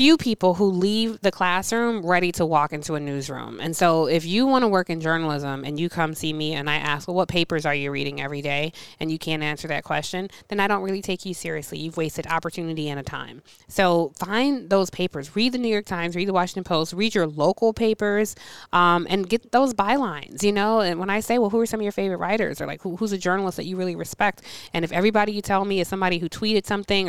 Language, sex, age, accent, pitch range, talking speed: English, female, 20-39, American, 160-200 Hz, 250 wpm